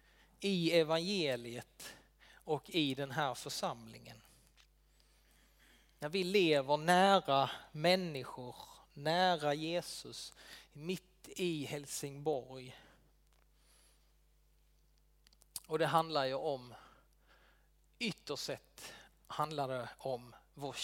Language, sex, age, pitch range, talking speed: Swedish, male, 30-49, 130-165 Hz, 80 wpm